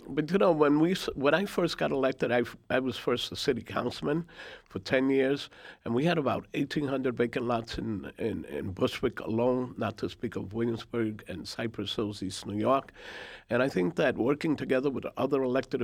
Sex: male